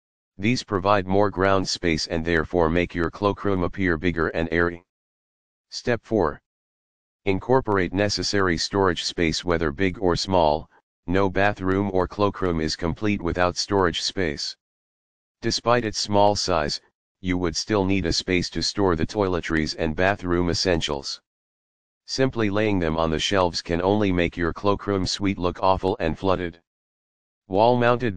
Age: 40-59